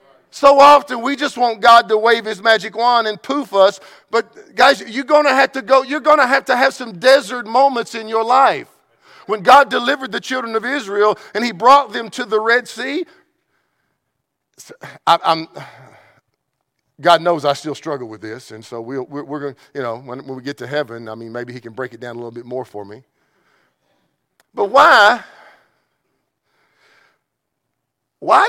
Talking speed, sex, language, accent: 190 wpm, male, English, American